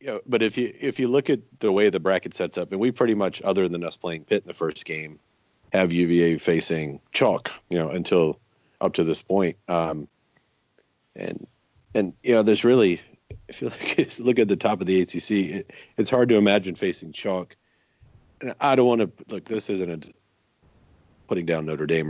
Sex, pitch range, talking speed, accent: male, 80-105 Hz, 215 wpm, American